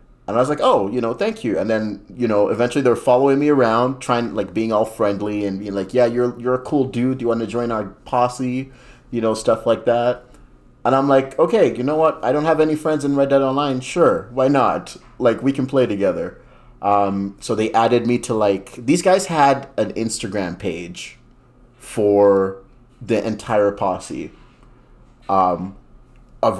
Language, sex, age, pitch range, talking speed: English, male, 30-49, 100-125 Hz, 195 wpm